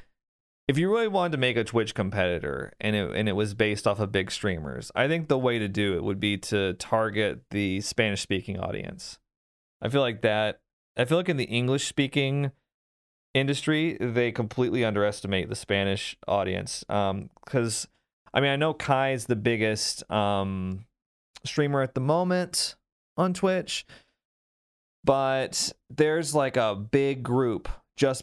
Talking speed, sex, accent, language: 160 wpm, male, American, English